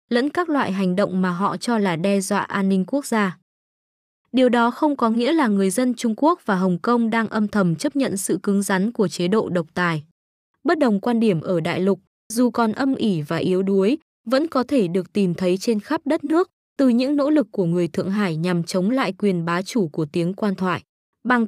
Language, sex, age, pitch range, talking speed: Vietnamese, female, 20-39, 185-240 Hz, 235 wpm